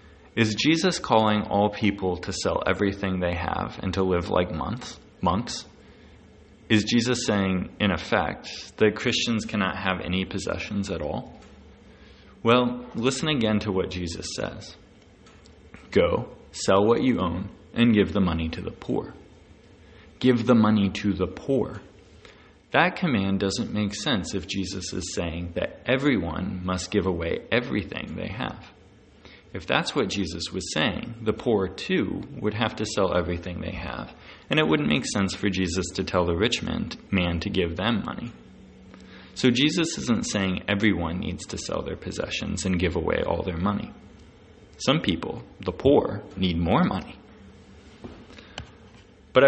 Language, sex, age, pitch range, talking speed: English, male, 20-39, 90-110 Hz, 155 wpm